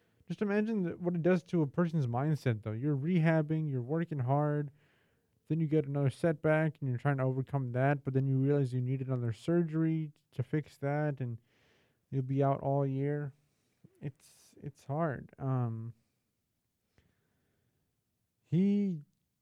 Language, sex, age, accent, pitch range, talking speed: English, male, 30-49, American, 125-150 Hz, 150 wpm